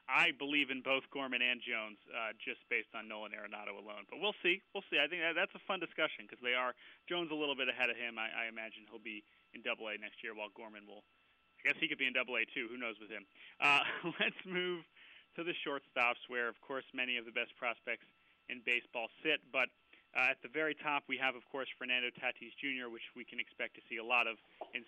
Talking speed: 240 wpm